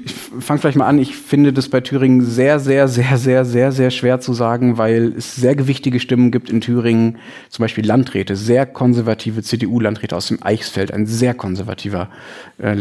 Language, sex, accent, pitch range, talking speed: German, male, German, 110-130 Hz, 185 wpm